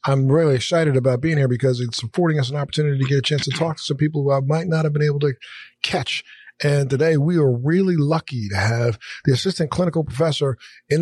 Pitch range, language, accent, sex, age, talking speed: 135-160 Hz, English, American, male, 50-69, 235 wpm